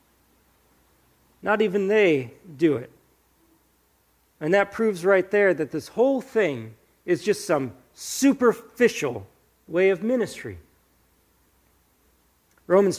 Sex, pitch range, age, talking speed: male, 175-225 Hz, 40-59, 100 wpm